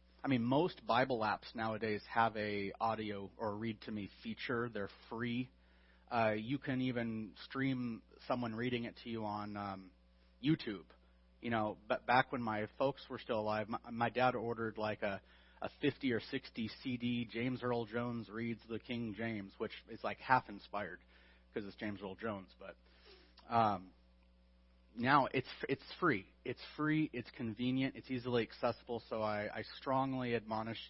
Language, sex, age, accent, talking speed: English, male, 30-49, American, 160 wpm